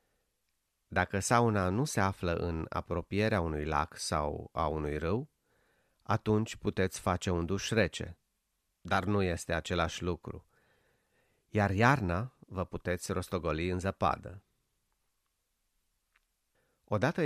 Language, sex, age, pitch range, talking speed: Romanian, male, 30-49, 85-105 Hz, 110 wpm